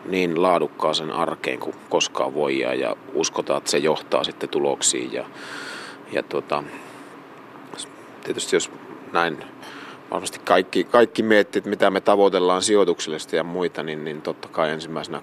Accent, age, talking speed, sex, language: native, 30-49, 140 wpm, male, Finnish